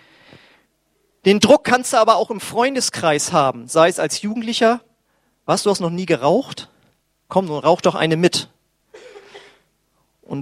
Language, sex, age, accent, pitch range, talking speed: German, male, 40-59, German, 145-195 Hz, 145 wpm